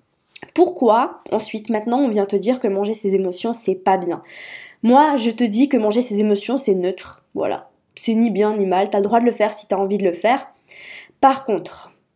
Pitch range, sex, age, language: 200-255 Hz, female, 20-39, French